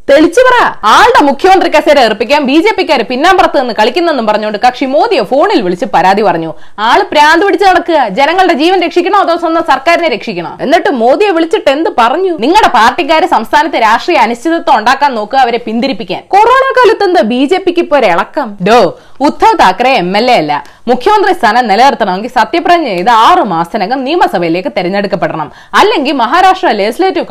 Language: Malayalam